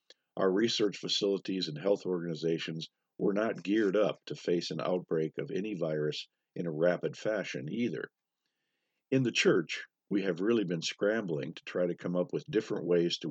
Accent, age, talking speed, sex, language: American, 50-69, 175 wpm, male, English